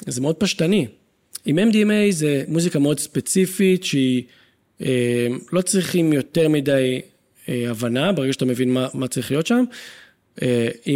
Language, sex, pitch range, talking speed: Hebrew, male, 130-190 Hz, 140 wpm